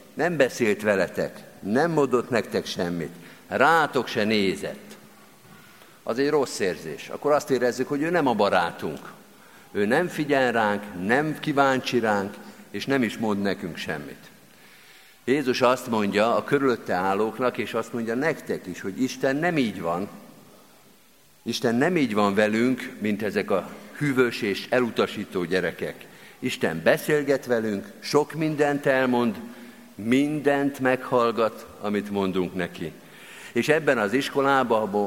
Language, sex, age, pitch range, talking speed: Hungarian, male, 50-69, 110-140 Hz, 135 wpm